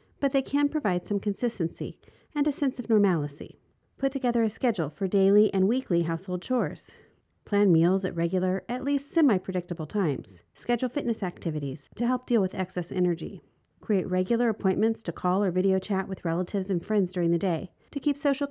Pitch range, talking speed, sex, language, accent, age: 175-235 Hz, 180 wpm, female, English, American, 40-59